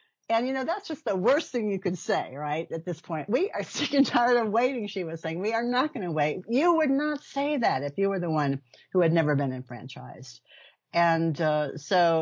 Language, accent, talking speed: English, American, 240 wpm